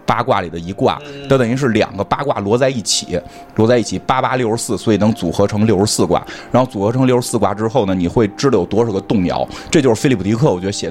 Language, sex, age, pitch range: Chinese, male, 20-39, 100-130 Hz